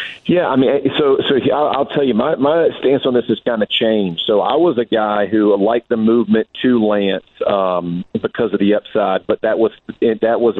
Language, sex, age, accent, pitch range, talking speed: English, male, 40-59, American, 100-115 Hz, 220 wpm